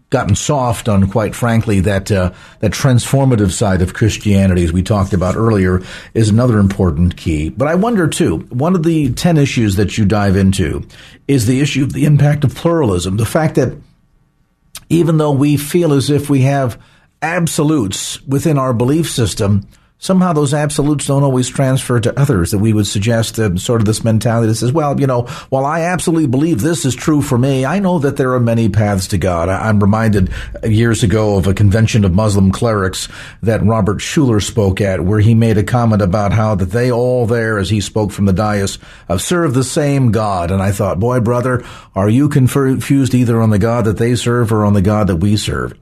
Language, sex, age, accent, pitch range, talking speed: English, male, 50-69, American, 105-140 Hz, 205 wpm